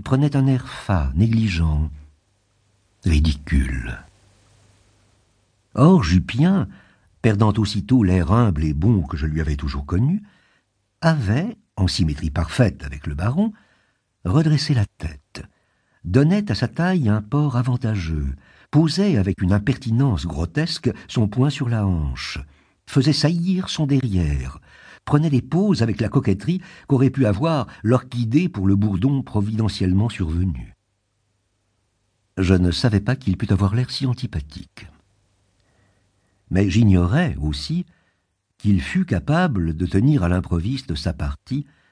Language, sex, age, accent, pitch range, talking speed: French, male, 60-79, French, 90-125 Hz, 125 wpm